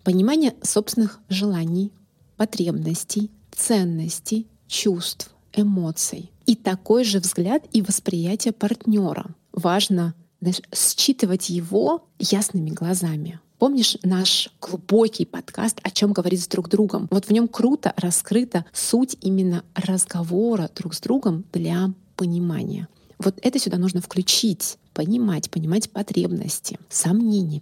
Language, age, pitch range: Russian, 30-49, 180-220 Hz